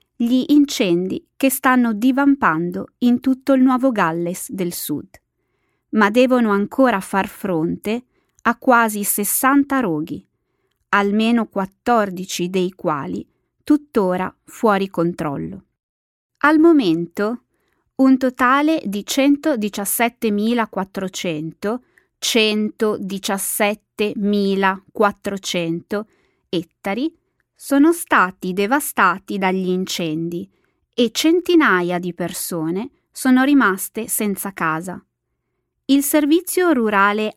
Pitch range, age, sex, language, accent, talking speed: 185-260 Hz, 20-39, female, Italian, native, 85 wpm